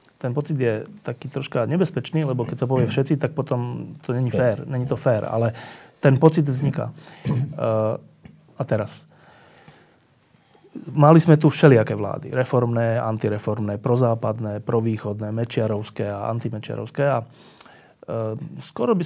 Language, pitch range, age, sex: Slovak, 115-150 Hz, 30-49, male